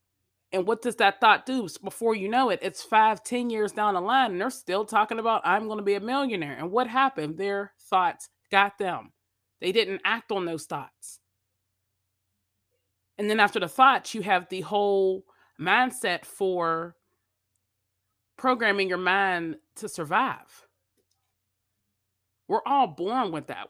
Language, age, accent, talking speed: English, 30-49, American, 155 wpm